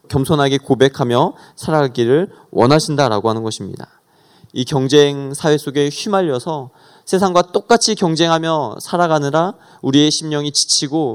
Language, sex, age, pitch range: Korean, male, 20-39, 130-170 Hz